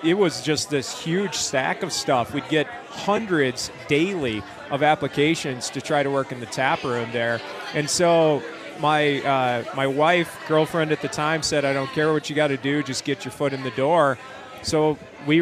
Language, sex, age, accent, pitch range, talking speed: English, male, 30-49, American, 130-150 Hz, 200 wpm